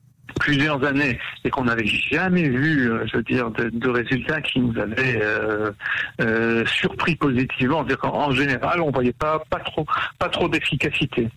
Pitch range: 125-150 Hz